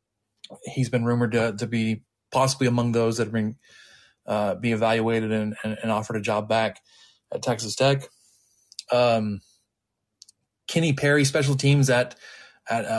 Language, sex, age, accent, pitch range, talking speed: English, male, 20-39, American, 110-130 Hz, 145 wpm